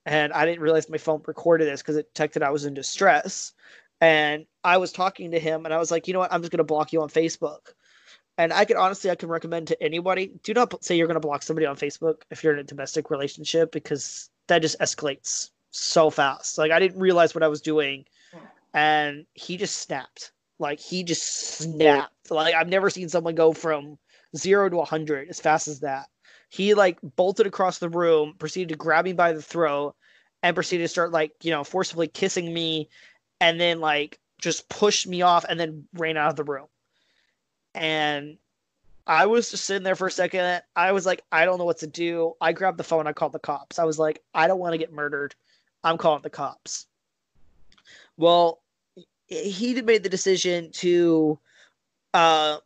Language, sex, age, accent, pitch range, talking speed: English, male, 20-39, American, 155-180 Hz, 205 wpm